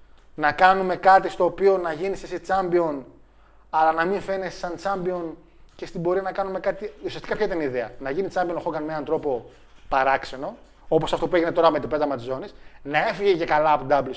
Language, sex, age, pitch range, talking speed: Greek, male, 30-49, 165-210 Hz, 215 wpm